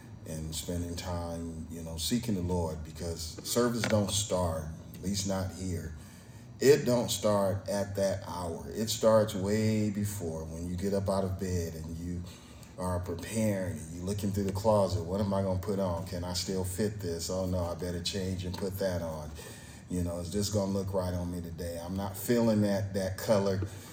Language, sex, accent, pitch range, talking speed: English, male, American, 90-105 Hz, 195 wpm